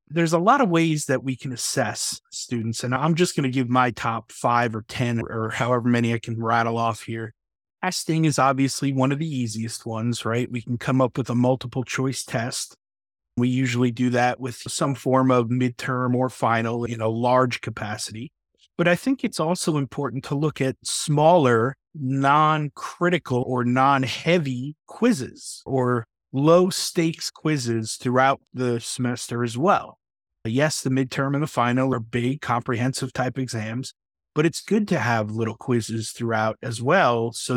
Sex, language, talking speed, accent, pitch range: male, English, 170 wpm, American, 120-150 Hz